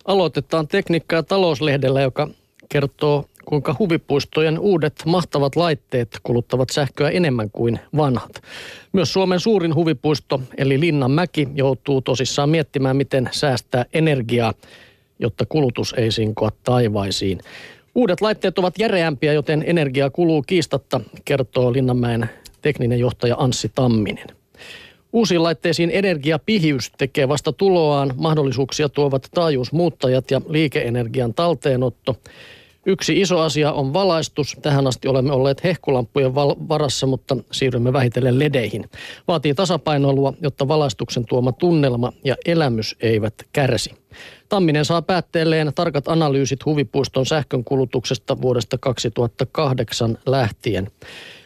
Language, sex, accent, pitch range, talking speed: Finnish, male, native, 125-160 Hz, 110 wpm